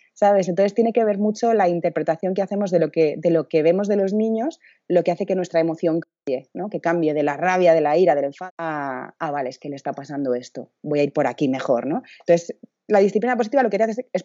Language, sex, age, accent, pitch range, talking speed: Spanish, female, 30-49, Spanish, 155-205 Hz, 265 wpm